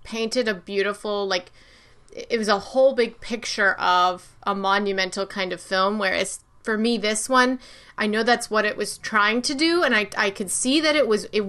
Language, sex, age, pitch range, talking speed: English, female, 20-39, 195-230 Hz, 205 wpm